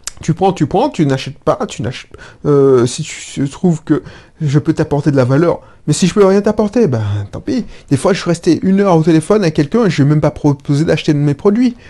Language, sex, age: French, male, 30-49